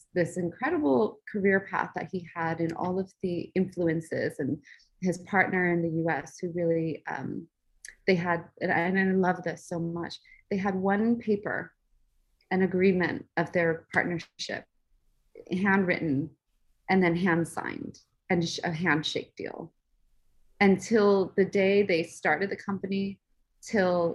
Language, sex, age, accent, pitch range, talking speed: English, female, 30-49, American, 170-195 Hz, 140 wpm